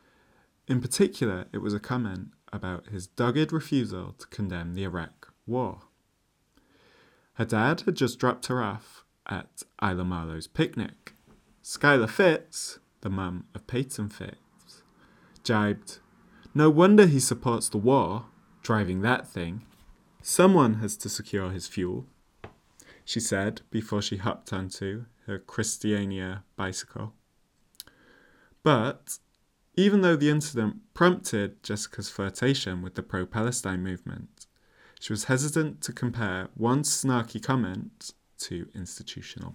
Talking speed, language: 120 wpm, English